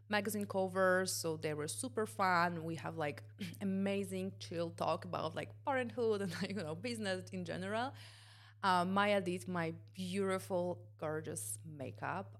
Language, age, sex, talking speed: English, 30-49, female, 140 wpm